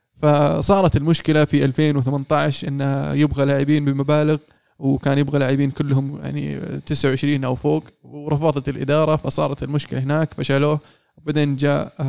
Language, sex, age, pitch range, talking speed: Arabic, male, 20-39, 135-155 Hz, 120 wpm